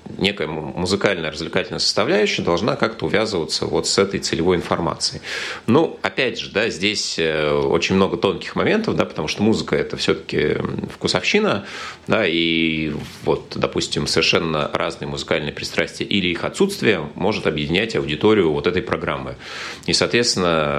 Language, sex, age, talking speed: Russian, male, 30-49, 135 wpm